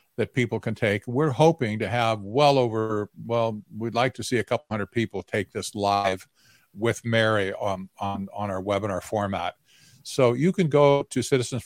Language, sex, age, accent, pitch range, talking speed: English, male, 50-69, American, 110-135 Hz, 185 wpm